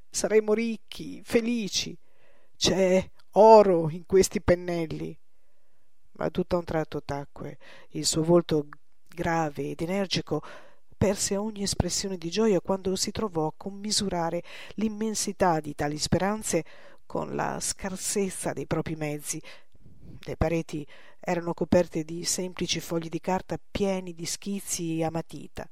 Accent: native